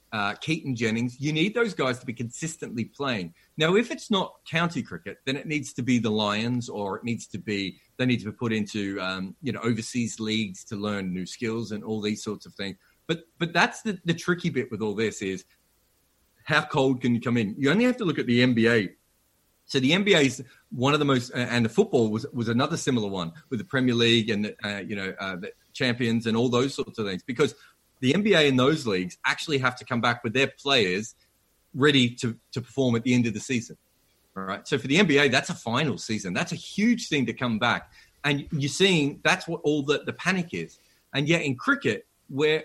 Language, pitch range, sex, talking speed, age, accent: English, 110-155 Hz, male, 230 wpm, 30-49, Australian